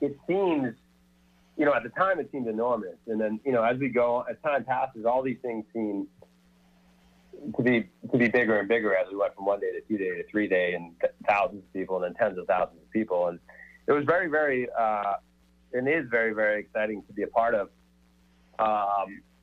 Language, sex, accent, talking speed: English, male, American, 220 wpm